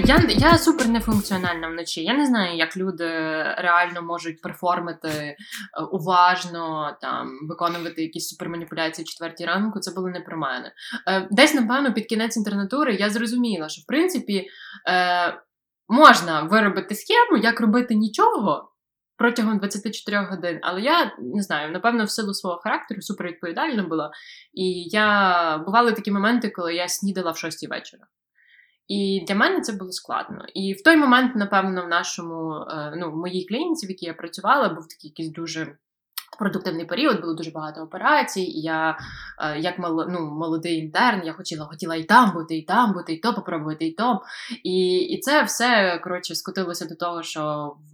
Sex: female